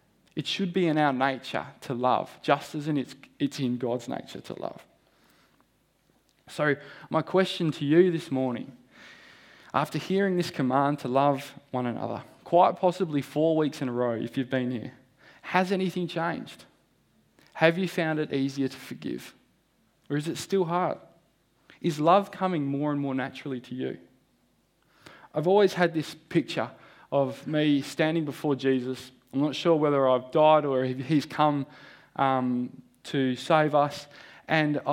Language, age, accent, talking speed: English, 20-39, Australian, 160 wpm